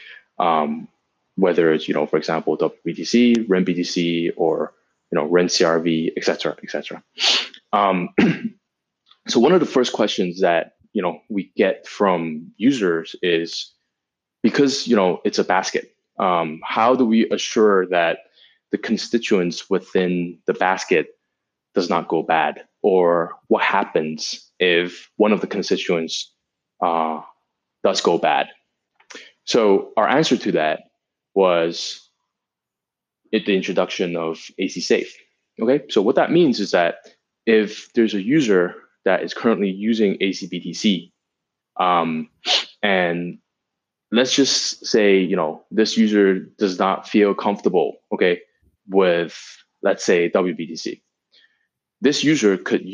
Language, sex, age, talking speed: English, male, 20-39, 130 wpm